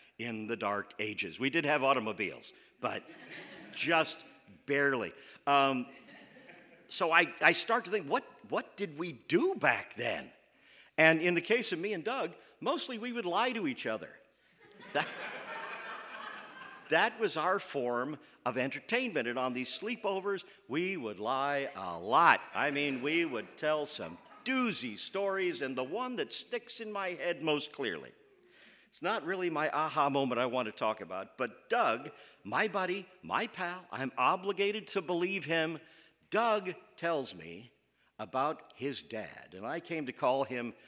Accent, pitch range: American, 135-195 Hz